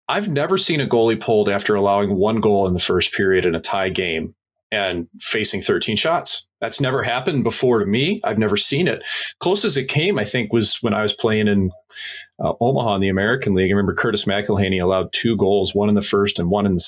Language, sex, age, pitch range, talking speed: English, male, 30-49, 100-140 Hz, 230 wpm